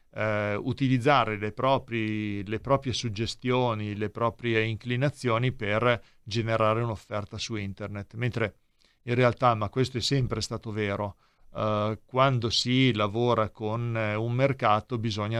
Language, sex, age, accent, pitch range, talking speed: Italian, male, 40-59, native, 105-130 Hz, 125 wpm